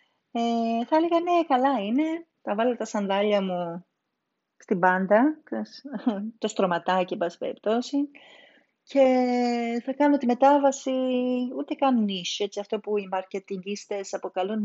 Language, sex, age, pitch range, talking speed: Greek, female, 30-49, 175-245 Hz, 130 wpm